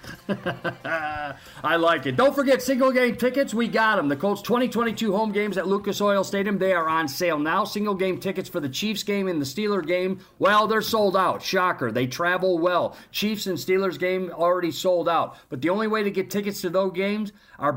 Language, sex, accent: English, male, American